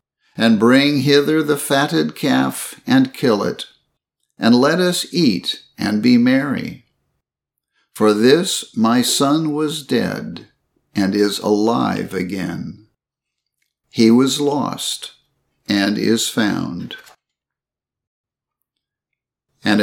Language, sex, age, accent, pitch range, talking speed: English, male, 60-79, American, 110-145 Hz, 100 wpm